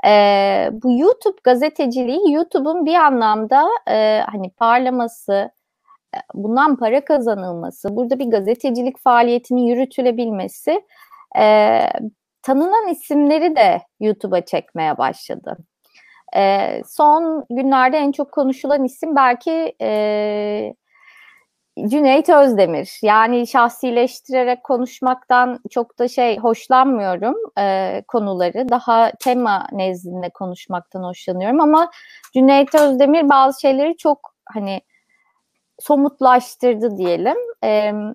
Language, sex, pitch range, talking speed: Turkish, female, 210-290 Hz, 95 wpm